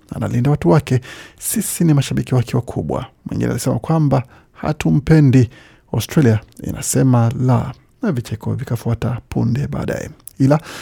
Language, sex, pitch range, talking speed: Swahili, male, 120-145 Hz, 115 wpm